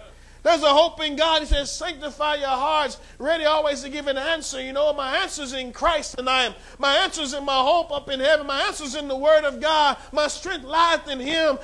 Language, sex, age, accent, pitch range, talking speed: English, male, 40-59, American, 235-295 Hz, 230 wpm